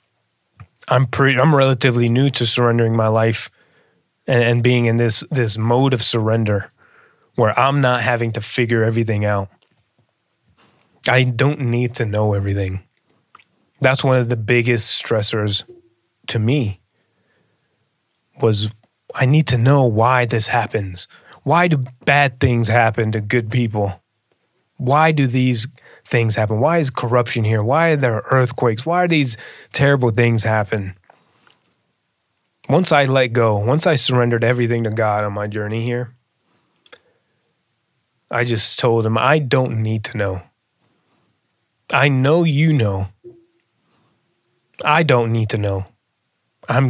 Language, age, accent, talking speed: English, 20-39, American, 140 wpm